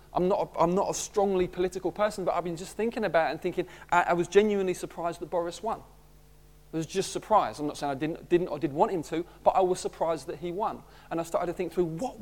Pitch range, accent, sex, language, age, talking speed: 160-210 Hz, British, male, English, 30-49, 275 wpm